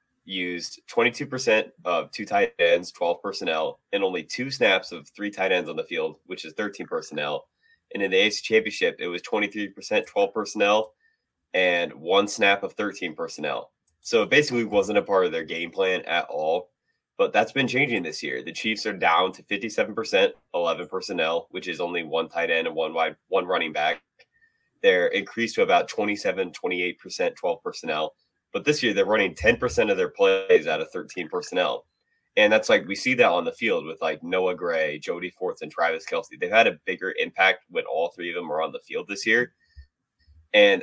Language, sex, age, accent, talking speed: English, male, 20-39, American, 195 wpm